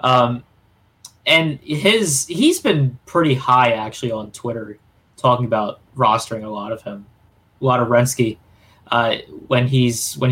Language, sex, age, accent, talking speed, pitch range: English, male, 20-39, American, 145 wpm, 115-155 Hz